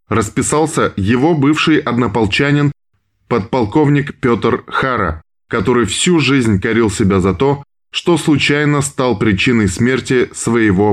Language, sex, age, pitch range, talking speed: Russian, male, 20-39, 105-140 Hz, 110 wpm